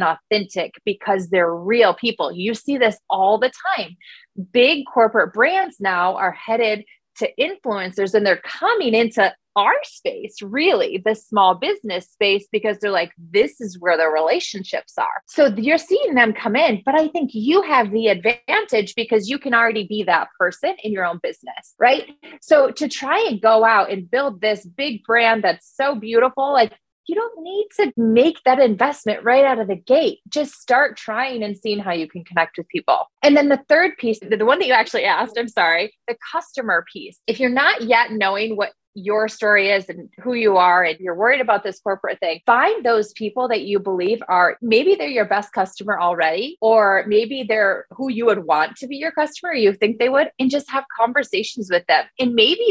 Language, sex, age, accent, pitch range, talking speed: English, female, 20-39, American, 205-280 Hz, 200 wpm